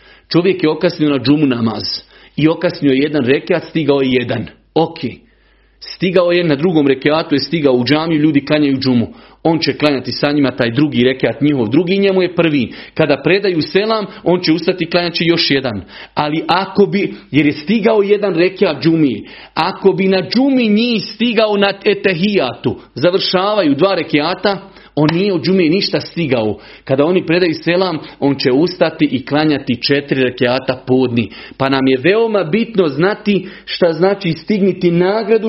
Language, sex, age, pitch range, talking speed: Croatian, male, 40-59, 145-190 Hz, 160 wpm